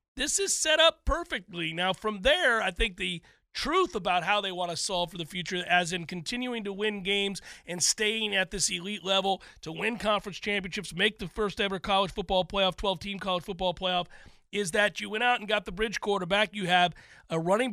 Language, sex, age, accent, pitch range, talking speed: English, male, 40-59, American, 180-215 Hz, 205 wpm